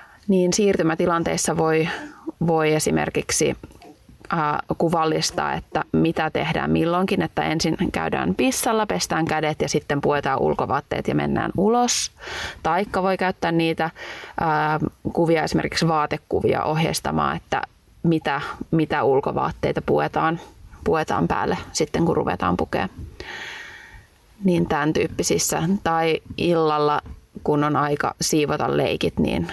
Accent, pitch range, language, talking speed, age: native, 155-205 Hz, Finnish, 110 wpm, 20-39